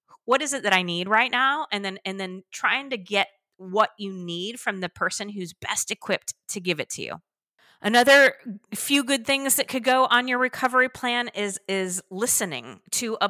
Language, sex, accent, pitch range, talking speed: English, female, American, 180-225 Hz, 205 wpm